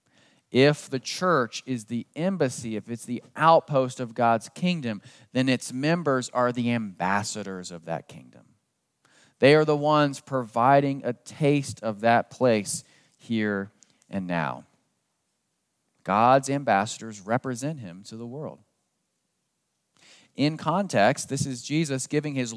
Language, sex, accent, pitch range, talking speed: English, male, American, 110-140 Hz, 130 wpm